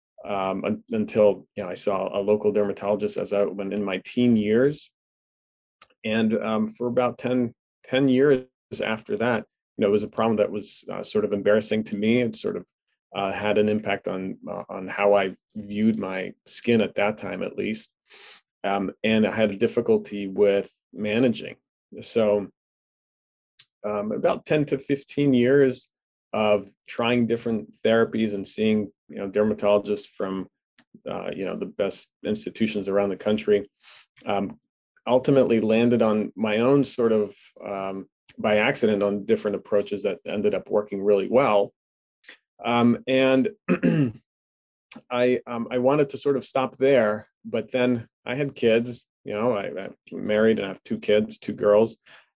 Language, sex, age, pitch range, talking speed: English, male, 30-49, 100-120 Hz, 160 wpm